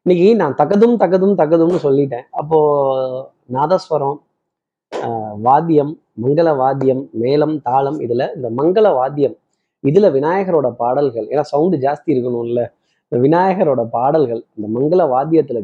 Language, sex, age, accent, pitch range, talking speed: Tamil, male, 20-39, native, 130-170 Hz, 115 wpm